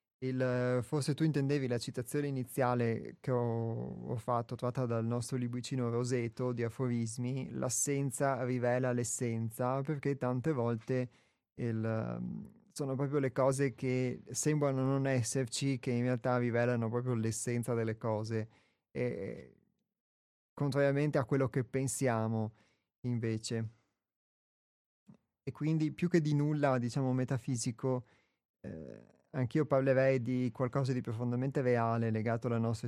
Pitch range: 115-140 Hz